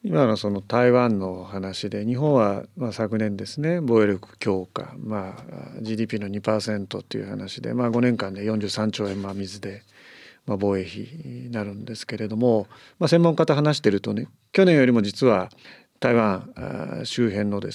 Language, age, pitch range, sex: Japanese, 40-59, 105-145 Hz, male